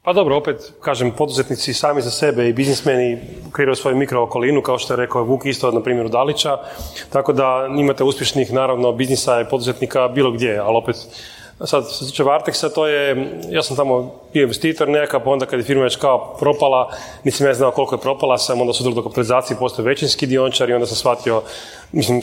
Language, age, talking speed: Croatian, 30-49, 195 wpm